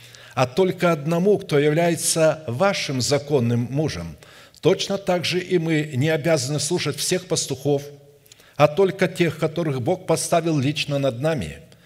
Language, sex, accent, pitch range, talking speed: Russian, male, native, 140-170 Hz, 135 wpm